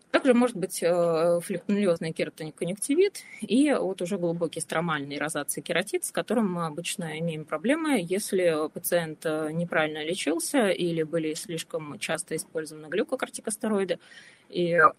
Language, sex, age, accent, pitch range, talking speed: Russian, female, 20-39, native, 160-195 Hz, 115 wpm